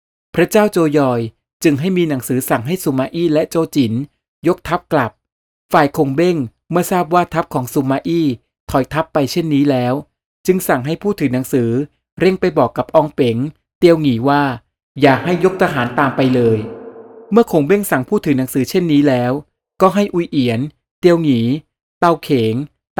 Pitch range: 135-170 Hz